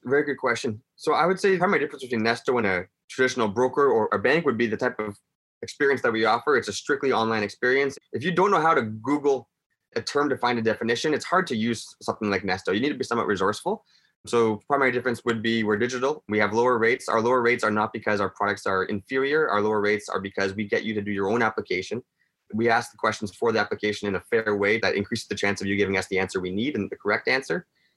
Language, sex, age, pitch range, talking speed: English, male, 20-39, 105-130 Hz, 260 wpm